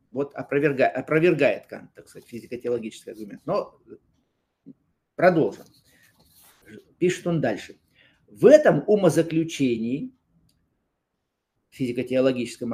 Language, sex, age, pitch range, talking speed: Russian, male, 50-69, 130-200 Hz, 75 wpm